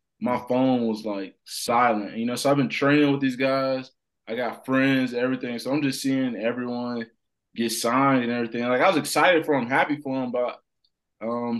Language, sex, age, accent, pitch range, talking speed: English, male, 20-39, American, 115-140 Hz, 195 wpm